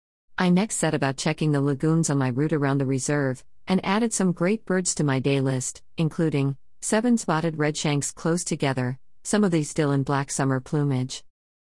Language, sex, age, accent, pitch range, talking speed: English, female, 50-69, American, 135-170 Hz, 185 wpm